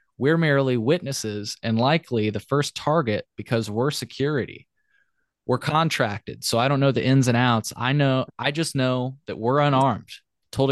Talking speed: 170 wpm